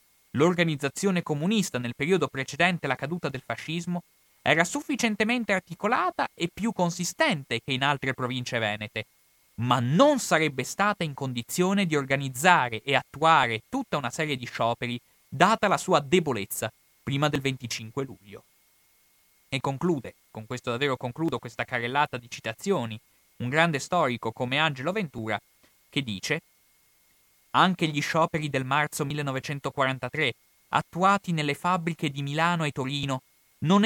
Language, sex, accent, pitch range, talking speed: Italian, male, native, 125-175 Hz, 135 wpm